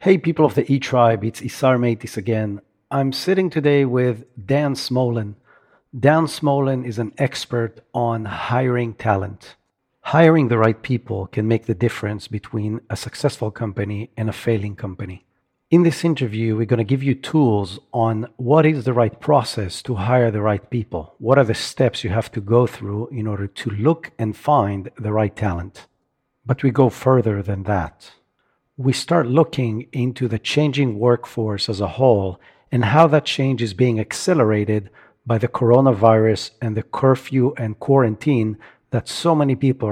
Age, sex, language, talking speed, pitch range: 50-69, male, English, 170 wpm, 110-135 Hz